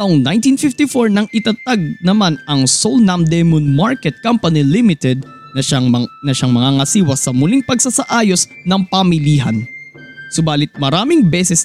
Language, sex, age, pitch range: Filipino, male, 20-39, 155-240 Hz